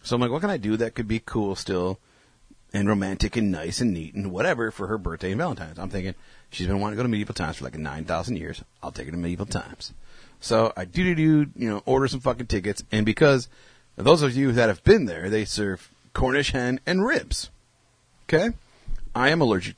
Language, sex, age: English, male, 30-49